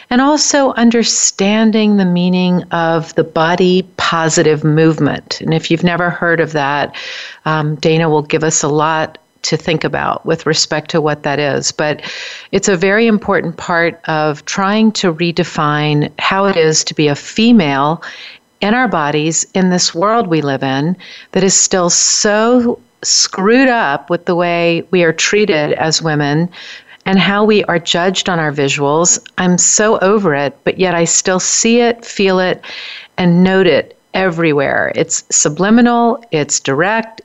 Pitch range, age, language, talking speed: 155-200 Hz, 50-69, English, 165 wpm